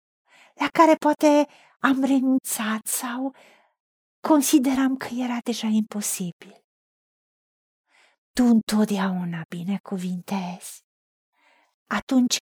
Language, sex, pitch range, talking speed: Romanian, female, 210-285 Hz, 70 wpm